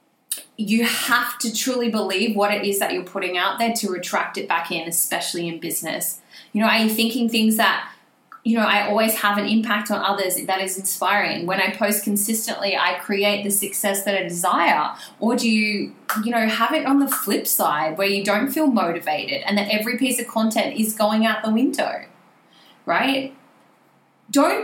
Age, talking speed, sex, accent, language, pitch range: 20-39, 195 wpm, female, Australian, English, 200-265 Hz